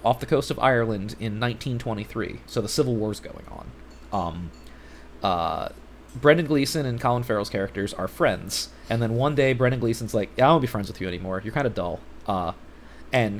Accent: American